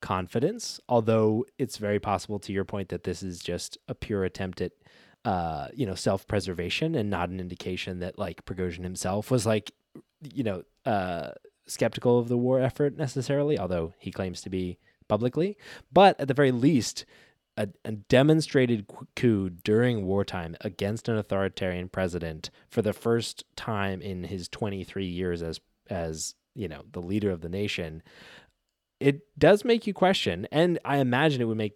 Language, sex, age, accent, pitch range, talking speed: English, male, 20-39, American, 95-125 Hz, 165 wpm